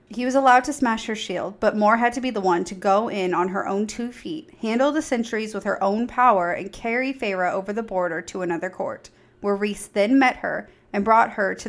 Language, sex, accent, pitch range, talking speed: English, female, American, 195-235 Hz, 240 wpm